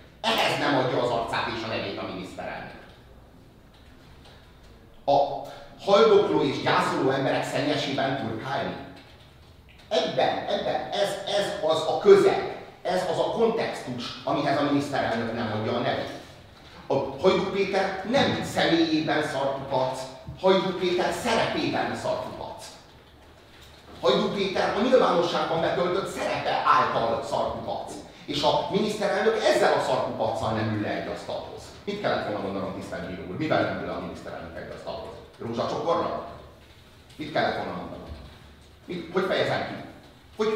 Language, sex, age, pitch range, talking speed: Hungarian, male, 30-49, 130-195 Hz, 125 wpm